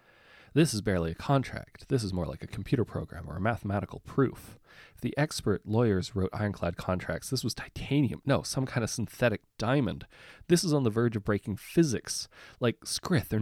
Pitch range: 85-110 Hz